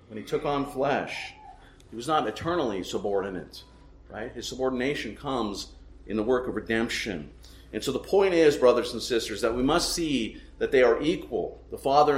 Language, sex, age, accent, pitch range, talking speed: English, male, 50-69, American, 95-145 Hz, 180 wpm